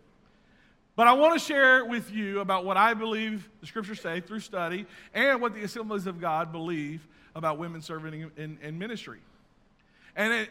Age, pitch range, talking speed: 40-59, 165-220 Hz, 185 wpm